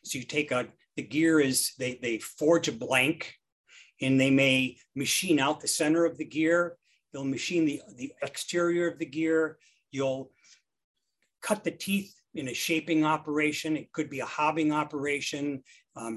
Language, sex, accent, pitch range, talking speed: English, male, American, 140-175 Hz, 170 wpm